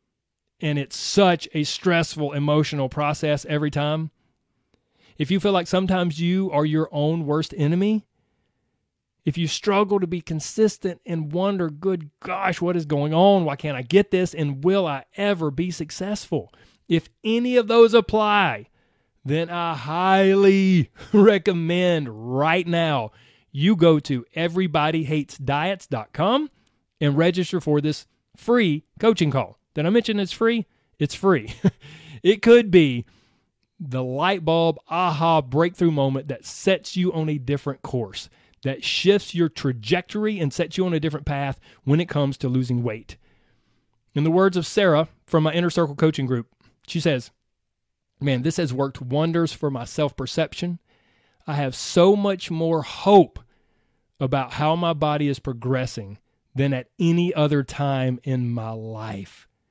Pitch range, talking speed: 135-180 Hz, 150 wpm